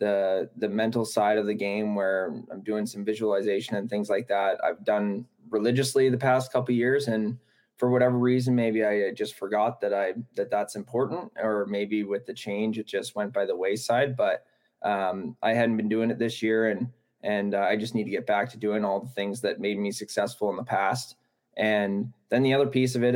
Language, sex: English, male